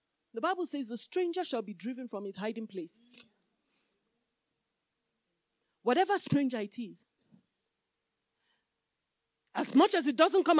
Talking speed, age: 125 wpm, 30-49